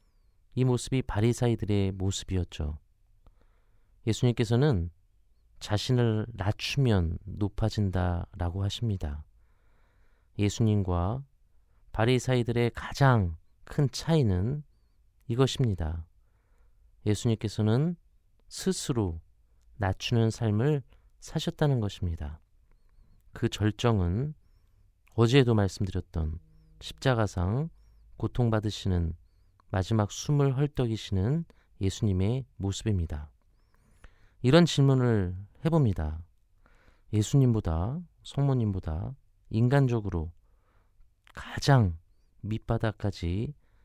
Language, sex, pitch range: Korean, male, 90-115 Hz